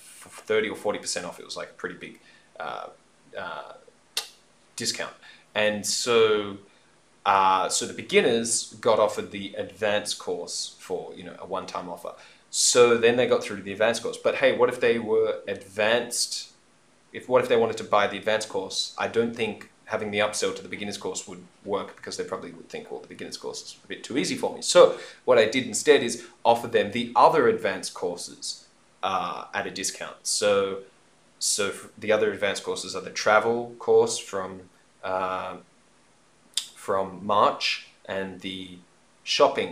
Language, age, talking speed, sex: English, 20-39, 180 wpm, male